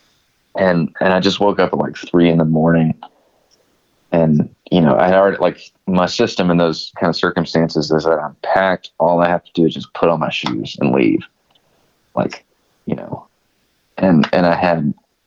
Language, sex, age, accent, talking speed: English, male, 30-49, American, 195 wpm